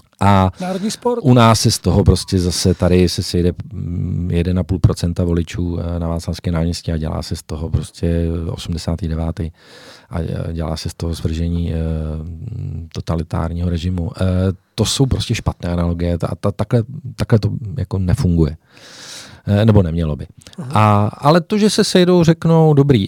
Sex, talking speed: male, 140 wpm